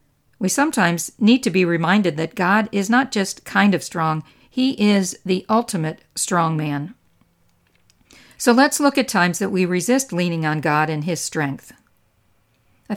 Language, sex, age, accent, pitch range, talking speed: English, female, 50-69, American, 170-205 Hz, 160 wpm